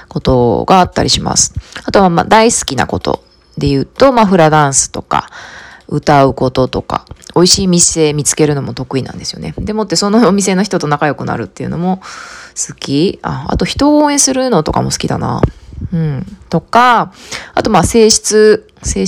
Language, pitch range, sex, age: Japanese, 145-205 Hz, female, 20-39